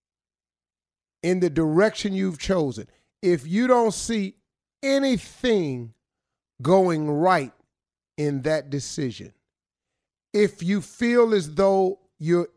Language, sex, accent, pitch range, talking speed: English, male, American, 145-205 Hz, 100 wpm